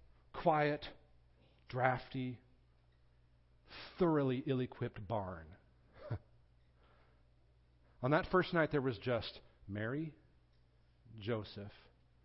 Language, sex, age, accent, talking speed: English, male, 50-69, American, 75 wpm